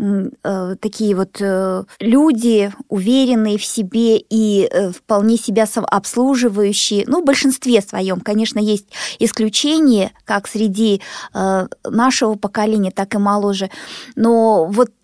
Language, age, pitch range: Russian, 20-39, 205-245 Hz